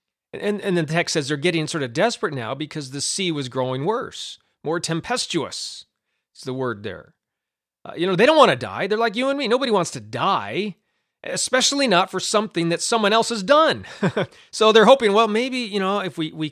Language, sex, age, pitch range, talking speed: English, male, 40-59, 135-200 Hz, 220 wpm